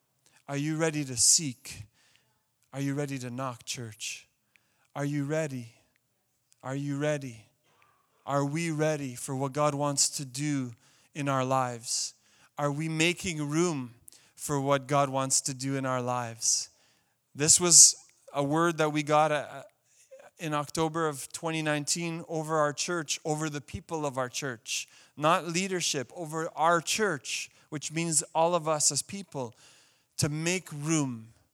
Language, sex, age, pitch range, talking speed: English, male, 30-49, 135-160 Hz, 145 wpm